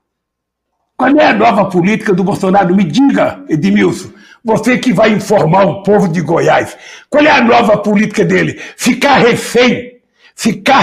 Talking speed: 150 wpm